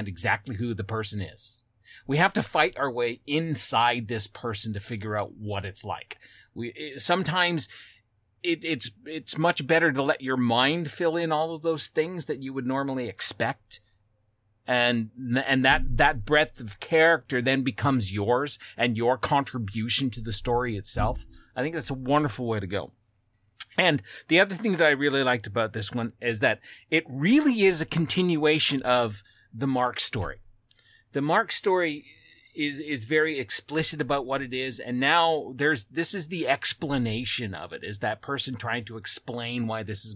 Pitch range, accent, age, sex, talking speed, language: 110-150 Hz, American, 30-49, male, 175 wpm, English